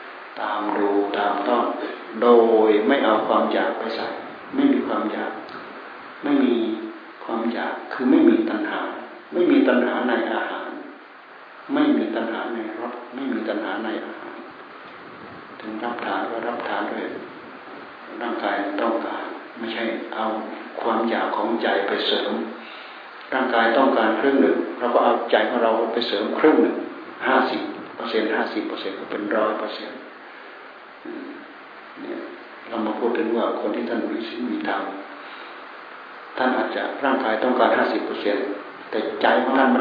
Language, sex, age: Thai, male, 60-79